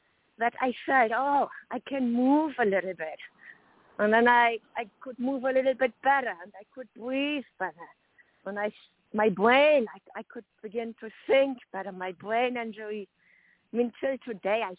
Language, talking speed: English, 175 wpm